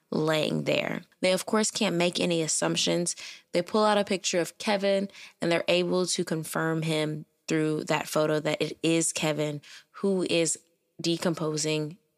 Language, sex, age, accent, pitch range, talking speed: English, female, 10-29, American, 160-205 Hz, 160 wpm